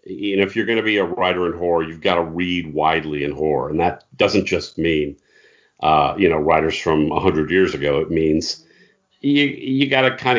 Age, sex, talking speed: 50-69, male, 220 wpm